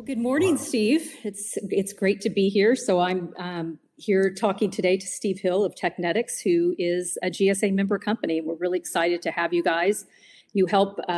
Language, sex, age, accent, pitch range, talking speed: English, female, 40-59, American, 175-215 Hz, 195 wpm